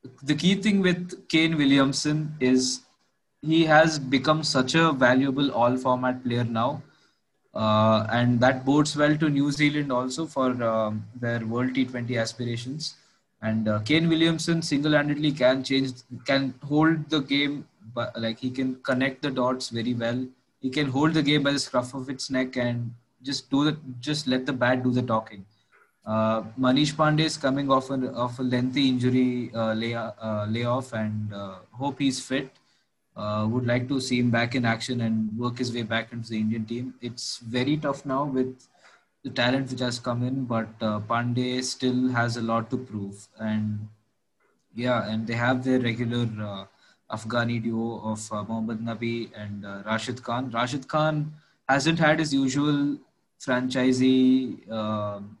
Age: 20-39